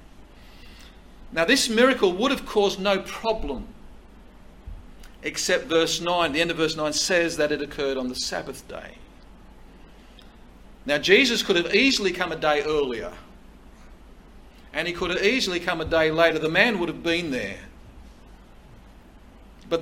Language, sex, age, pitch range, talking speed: English, male, 50-69, 155-205 Hz, 150 wpm